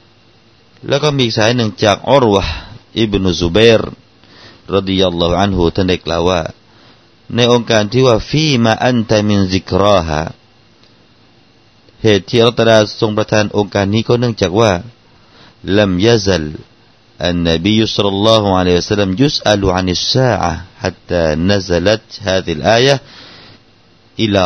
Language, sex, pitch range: Thai, male, 85-115 Hz